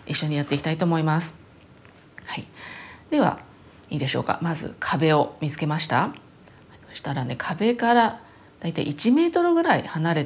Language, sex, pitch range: Japanese, female, 150-230 Hz